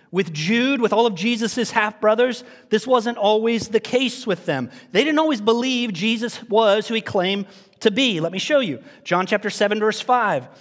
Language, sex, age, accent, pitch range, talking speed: English, male, 40-59, American, 160-235 Hz, 190 wpm